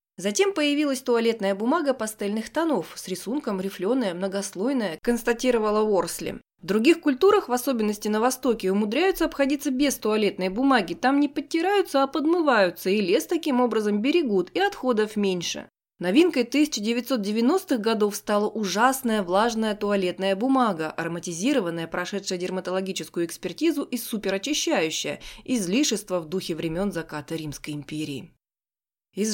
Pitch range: 195-270 Hz